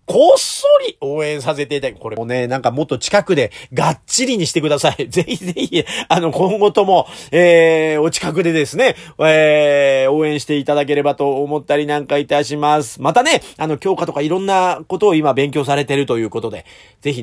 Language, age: Japanese, 40-59